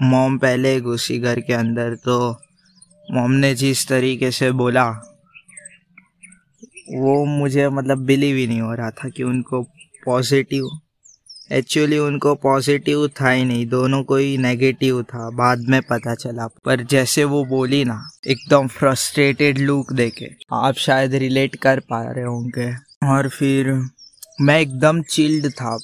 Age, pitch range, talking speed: 20-39, 120-140 Hz, 145 wpm